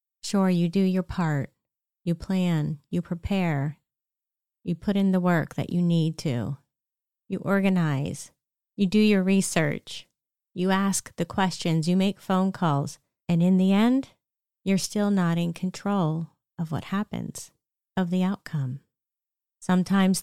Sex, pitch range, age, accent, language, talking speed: female, 165-195 Hz, 30-49, American, English, 140 wpm